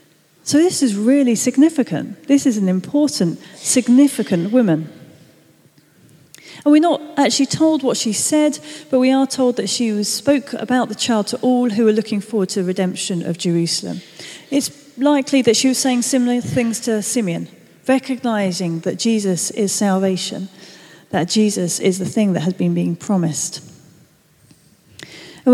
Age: 40-59